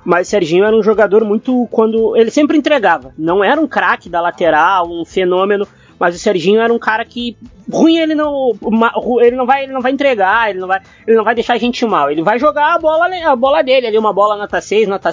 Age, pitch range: 20-39, 180-240 Hz